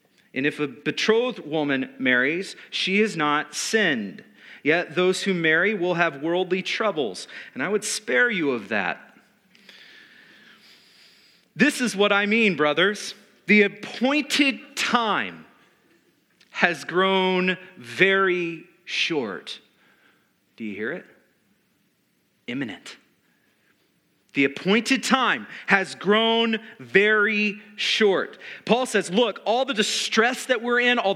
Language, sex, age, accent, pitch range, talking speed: English, male, 40-59, American, 185-230 Hz, 115 wpm